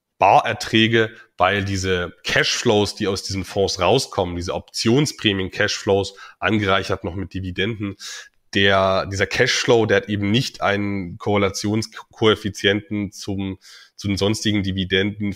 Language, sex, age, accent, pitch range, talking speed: German, male, 20-39, German, 95-115 Hz, 115 wpm